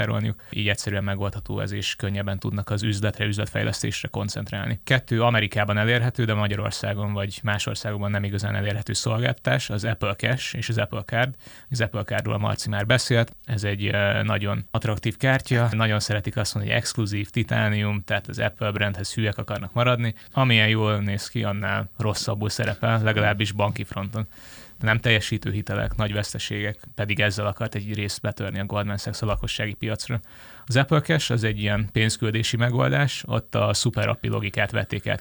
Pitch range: 105-115 Hz